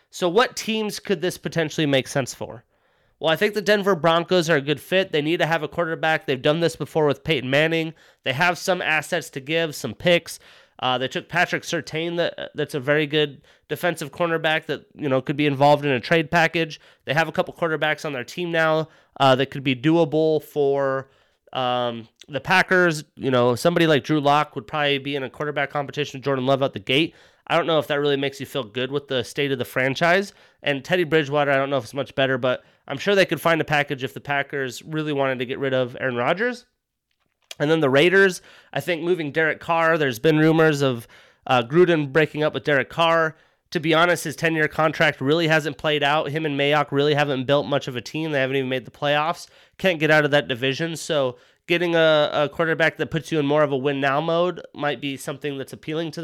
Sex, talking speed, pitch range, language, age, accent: male, 230 wpm, 140-165 Hz, English, 30-49, American